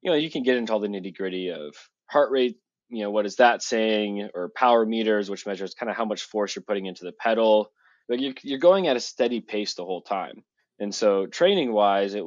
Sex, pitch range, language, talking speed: male, 100-120 Hz, English, 250 wpm